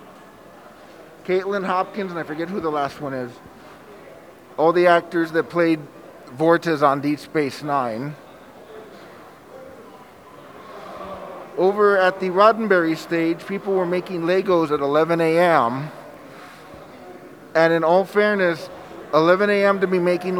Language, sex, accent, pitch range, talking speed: English, male, American, 145-180 Hz, 120 wpm